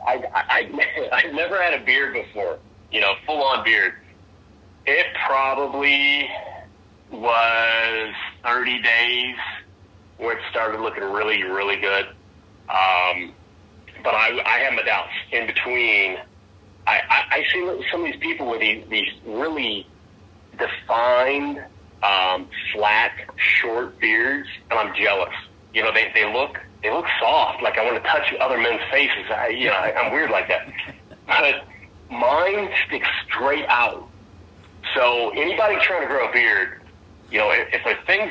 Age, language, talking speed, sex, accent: 30-49, English, 145 wpm, male, American